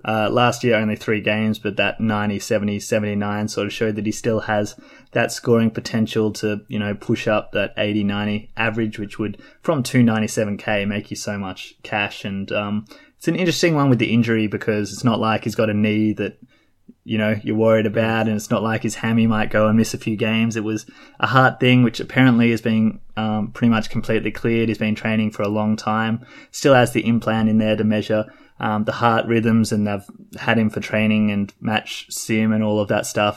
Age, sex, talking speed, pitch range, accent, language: 20-39, male, 220 wpm, 105-115 Hz, Australian, English